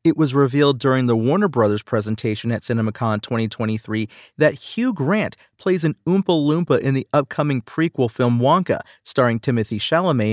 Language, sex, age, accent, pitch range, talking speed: English, male, 40-59, American, 115-145 Hz, 155 wpm